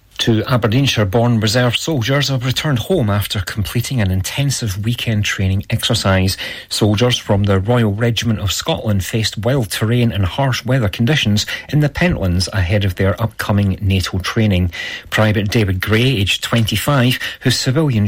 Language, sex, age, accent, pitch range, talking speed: English, male, 40-59, British, 100-130 Hz, 150 wpm